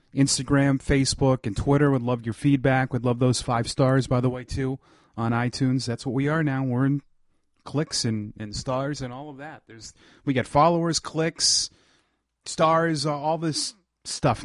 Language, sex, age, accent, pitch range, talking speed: English, male, 30-49, American, 120-150 Hz, 190 wpm